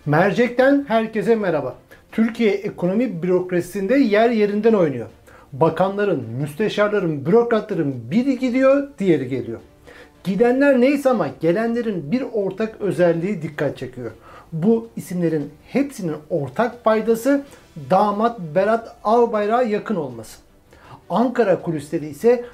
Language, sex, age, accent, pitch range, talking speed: Turkish, male, 60-79, native, 165-235 Hz, 100 wpm